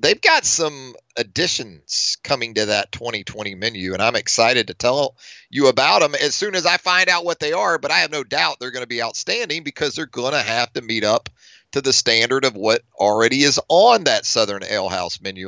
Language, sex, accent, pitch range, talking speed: English, male, American, 115-145 Hz, 215 wpm